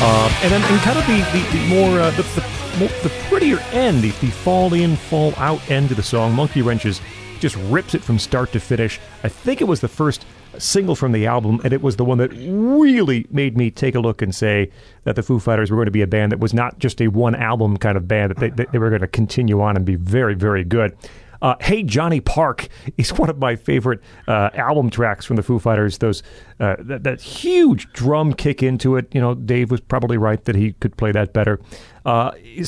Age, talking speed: 40-59, 240 wpm